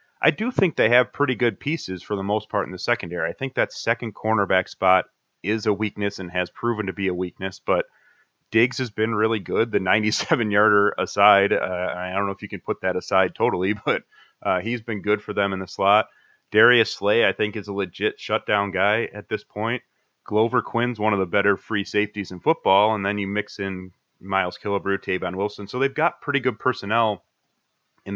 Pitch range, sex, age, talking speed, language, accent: 95-110 Hz, male, 30-49, 210 wpm, English, American